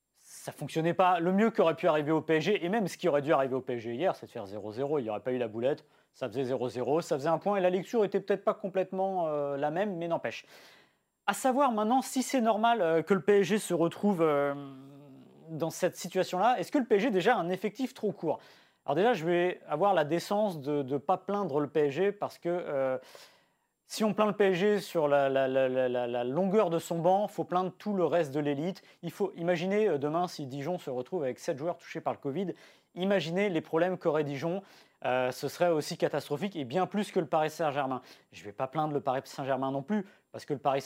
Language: French